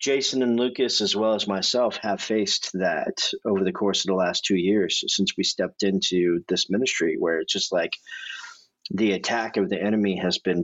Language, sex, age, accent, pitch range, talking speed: English, male, 40-59, American, 95-120 Hz, 195 wpm